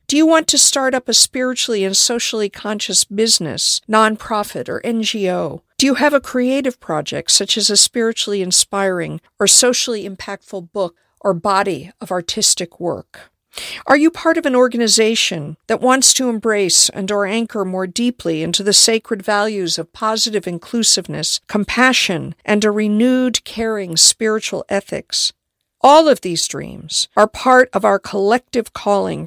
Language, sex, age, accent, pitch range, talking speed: English, female, 50-69, American, 190-240 Hz, 150 wpm